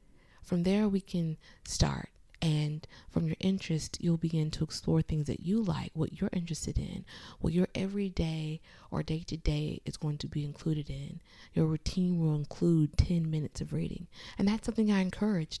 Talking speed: 175 wpm